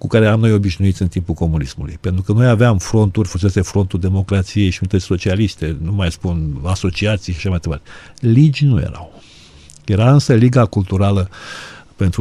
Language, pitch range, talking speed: Romanian, 90-125 Hz, 170 wpm